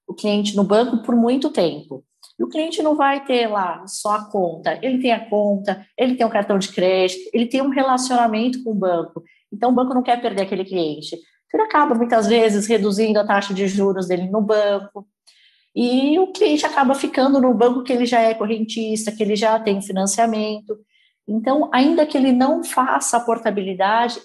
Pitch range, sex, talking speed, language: 195-245 Hz, female, 195 wpm, Portuguese